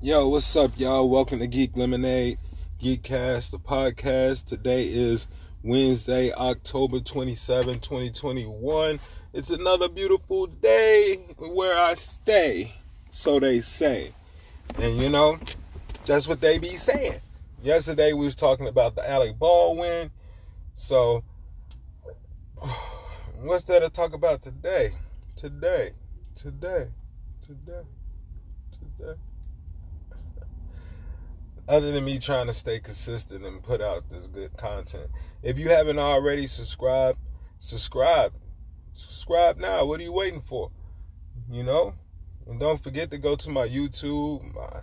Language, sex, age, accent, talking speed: English, male, 20-39, American, 125 wpm